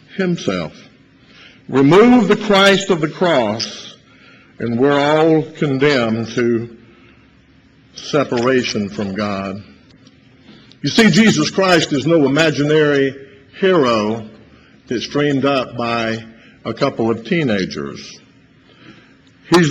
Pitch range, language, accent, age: 120-175 Hz, English, American, 50-69